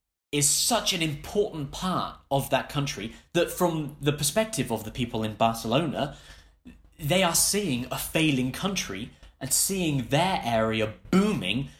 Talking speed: 140 wpm